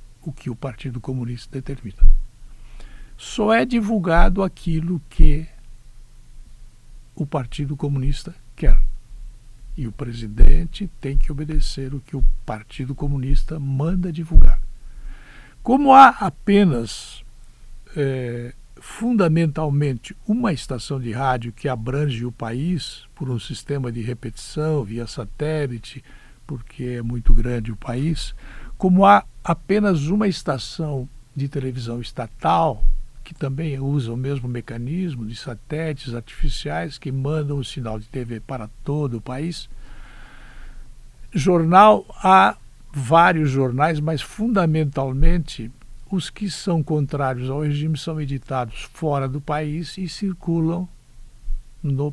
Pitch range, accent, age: 120-160 Hz, Brazilian, 60-79